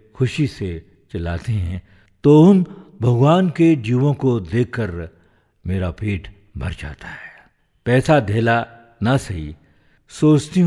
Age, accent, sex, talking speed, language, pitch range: 60-79, native, male, 120 wpm, Hindi, 95-130 Hz